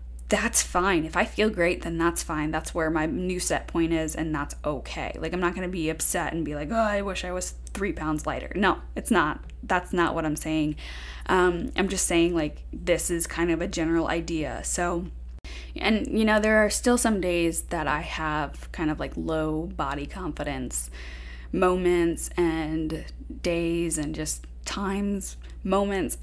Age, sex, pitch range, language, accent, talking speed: 10-29, female, 150-190 Hz, English, American, 190 wpm